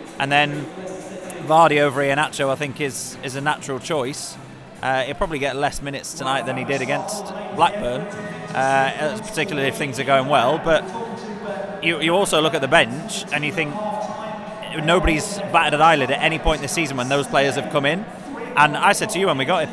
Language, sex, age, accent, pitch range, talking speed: English, male, 30-49, British, 140-185 Hz, 200 wpm